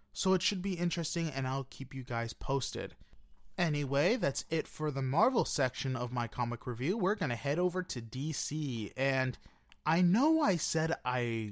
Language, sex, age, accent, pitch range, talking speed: English, male, 30-49, American, 120-180 Hz, 180 wpm